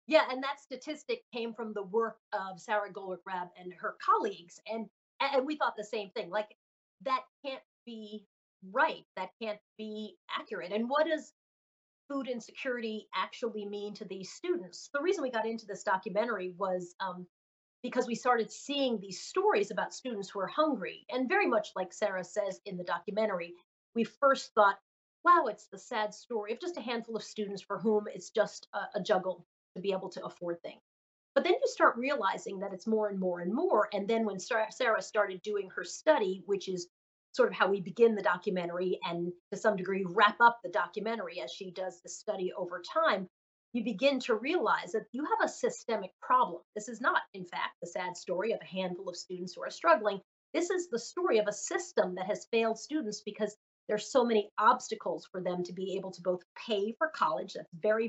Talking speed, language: 200 wpm, English